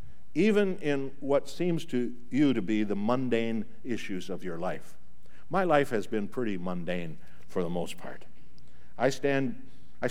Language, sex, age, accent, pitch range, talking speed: English, male, 60-79, American, 105-150 Hz, 160 wpm